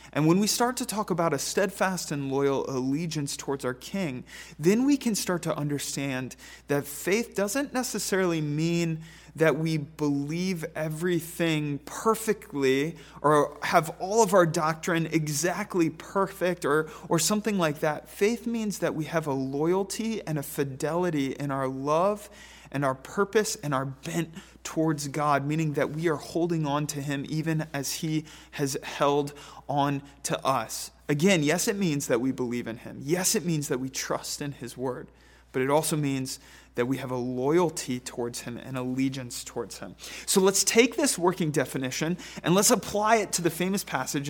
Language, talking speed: English, 175 wpm